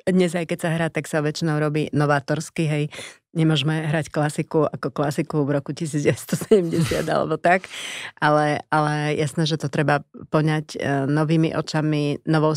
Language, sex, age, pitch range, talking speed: Slovak, female, 30-49, 145-165 Hz, 150 wpm